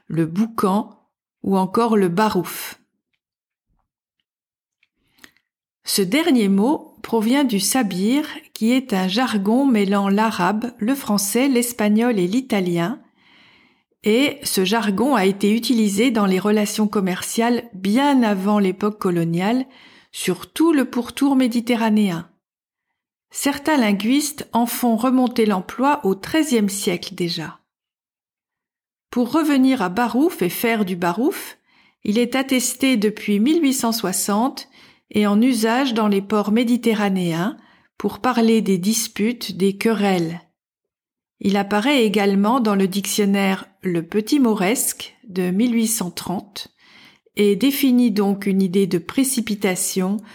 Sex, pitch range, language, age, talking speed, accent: female, 200-250 Hz, French, 50-69, 115 wpm, French